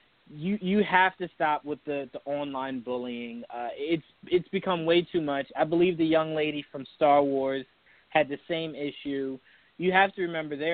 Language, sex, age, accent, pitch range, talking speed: English, male, 20-39, American, 130-165 Hz, 190 wpm